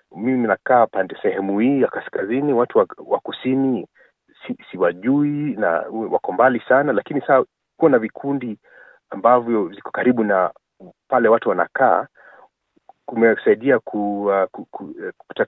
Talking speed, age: 115 wpm, 40-59